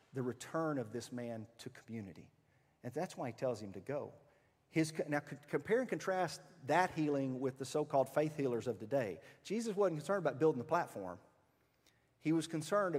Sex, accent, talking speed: male, American, 180 wpm